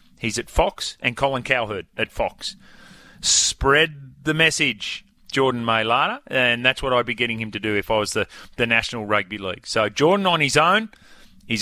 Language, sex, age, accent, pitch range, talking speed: English, male, 30-49, Australian, 120-150 Hz, 185 wpm